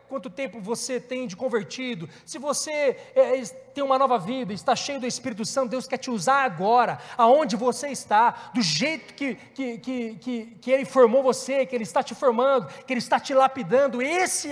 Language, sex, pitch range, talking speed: Portuguese, male, 250-300 Hz, 200 wpm